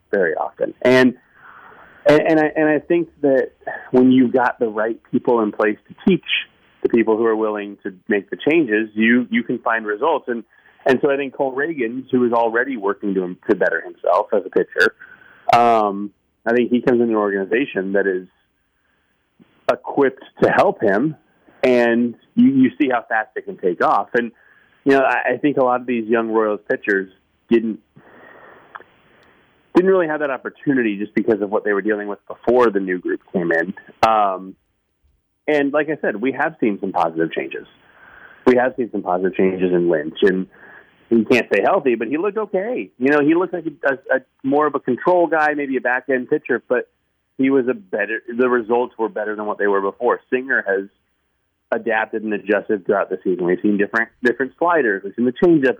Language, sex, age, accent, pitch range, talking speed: English, male, 30-49, American, 105-150 Hz, 200 wpm